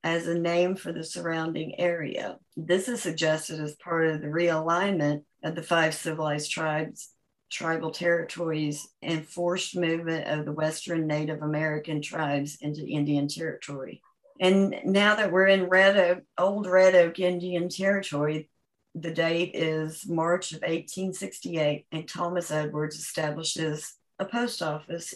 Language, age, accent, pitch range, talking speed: English, 50-69, American, 155-180 Hz, 135 wpm